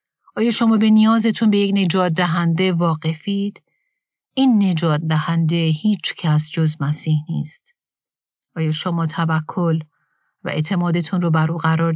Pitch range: 160-200 Hz